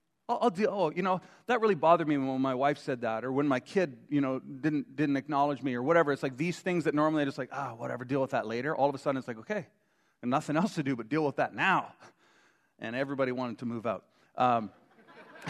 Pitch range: 140-200 Hz